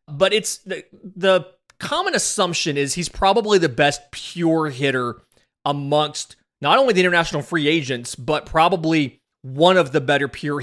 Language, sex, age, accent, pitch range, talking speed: English, male, 30-49, American, 135-175 Hz, 150 wpm